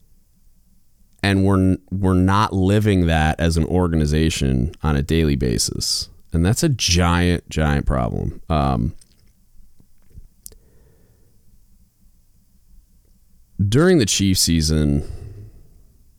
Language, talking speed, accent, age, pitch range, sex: English, 90 wpm, American, 30-49, 70-95 Hz, male